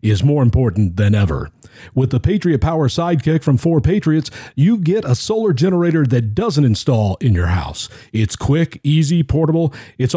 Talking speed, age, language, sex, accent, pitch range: 170 wpm, 50-69, English, male, American, 115-155 Hz